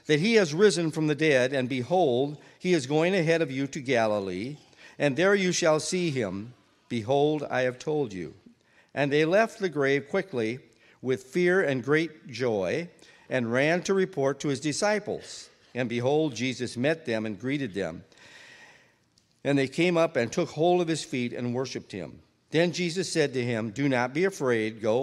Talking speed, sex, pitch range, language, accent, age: 185 wpm, male, 120-160 Hz, English, American, 50-69